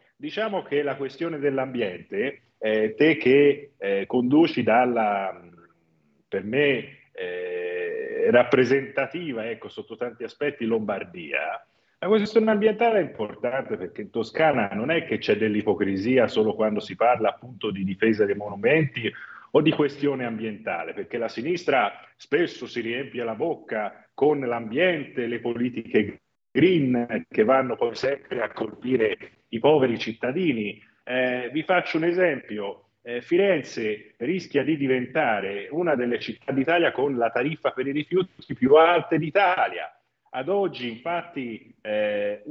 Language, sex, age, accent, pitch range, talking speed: Italian, male, 40-59, native, 120-170 Hz, 135 wpm